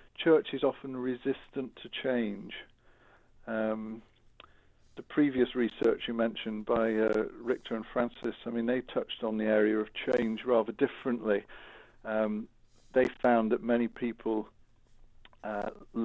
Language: English